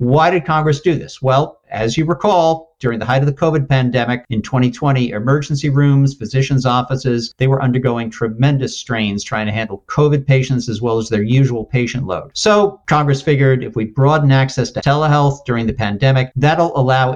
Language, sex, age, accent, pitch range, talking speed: English, male, 50-69, American, 115-150 Hz, 185 wpm